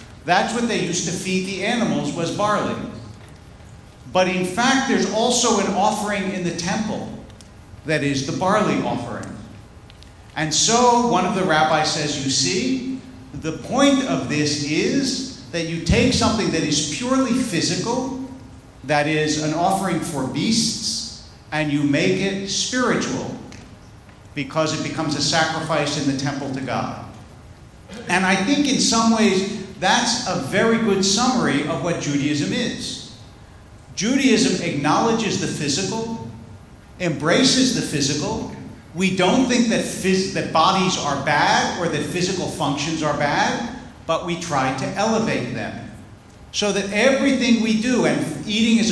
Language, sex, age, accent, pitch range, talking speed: English, male, 50-69, American, 140-220 Hz, 145 wpm